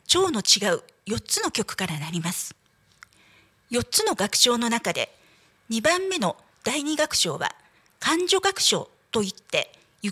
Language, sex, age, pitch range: Japanese, female, 40-59, 205-330 Hz